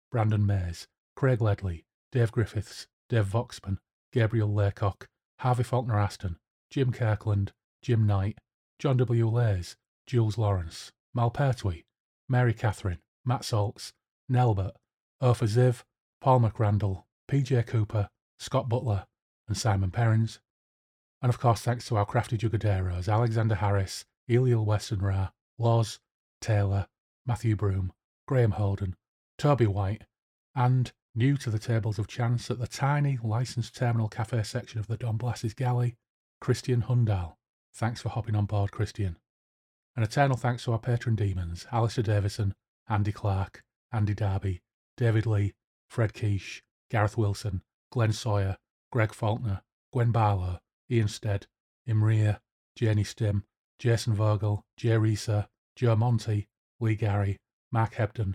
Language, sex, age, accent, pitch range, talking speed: English, male, 30-49, British, 100-120 Hz, 130 wpm